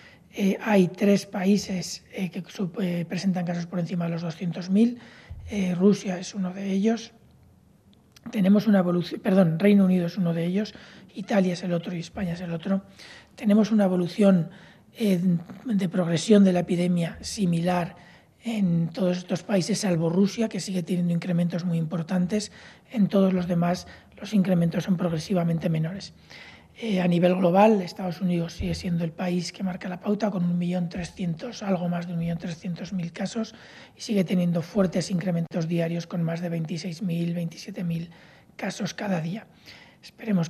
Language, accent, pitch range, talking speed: Spanish, Spanish, 175-200 Hz, 160 wpm